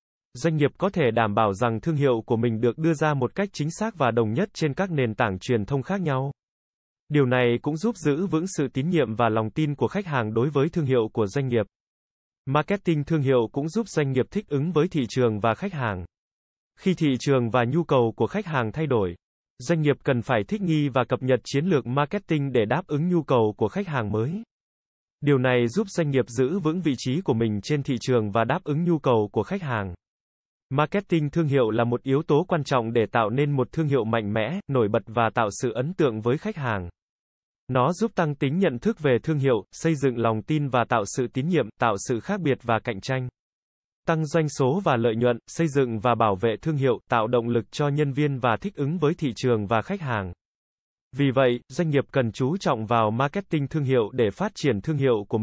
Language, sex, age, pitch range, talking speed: Vietnamese, male, 20-39, 120-160 Hz, 235 wpm